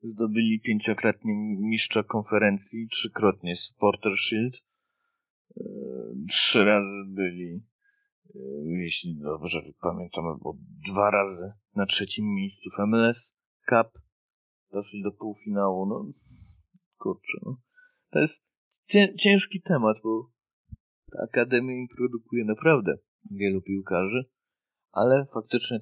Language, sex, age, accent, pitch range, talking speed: Polish, male, 40-59, native, 90-120 Hz, 100 wpm